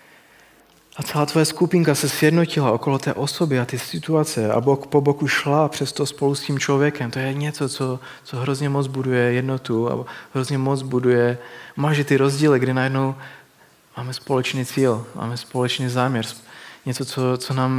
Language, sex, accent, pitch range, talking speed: Czech, male, native, 125-150 Hz, 170 wpm